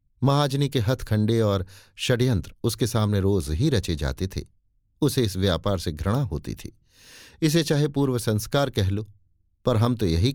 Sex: male